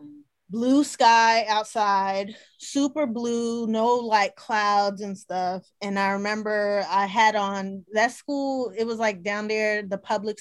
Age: 20-39